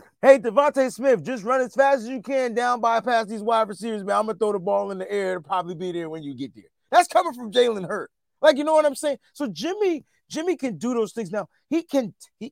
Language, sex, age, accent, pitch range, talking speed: English, male, 30-49, American, 195-270 Hz, 260 wpm